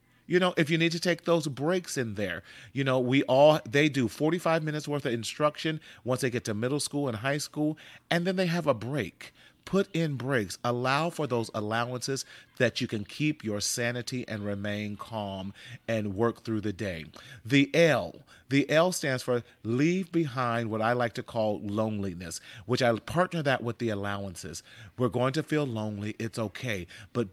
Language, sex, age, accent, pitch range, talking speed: English, male, 40-59, American, 110-140 Hz, 190 wpm